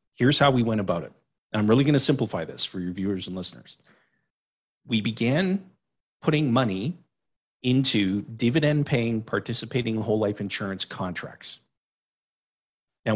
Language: English